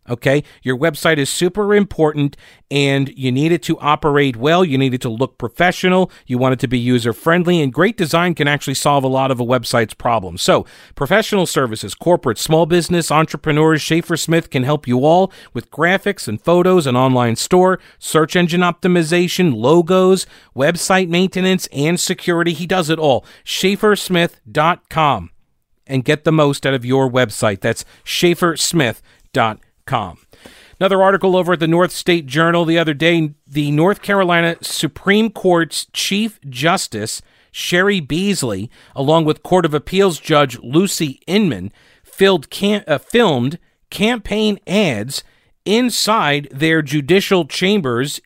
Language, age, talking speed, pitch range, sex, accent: English, 40-59, 145 wpm, 140-190 Hz, male, American